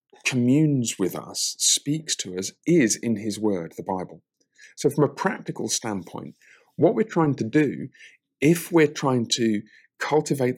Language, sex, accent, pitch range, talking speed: English, male, British, 95-125 Hz, 155 wpm